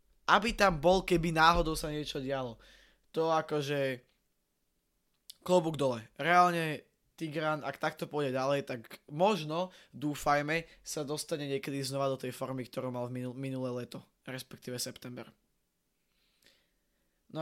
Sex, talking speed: male, 120 wpm